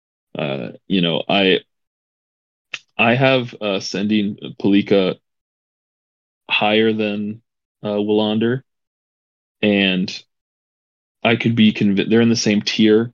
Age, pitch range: 20-39, 95-110 Hz